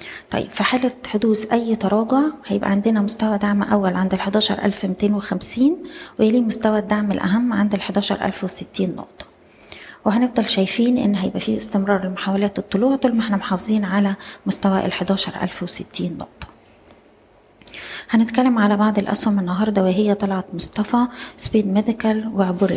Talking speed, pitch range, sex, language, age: 120 wpm, 195-220 Hz, female, Arabic, 20-39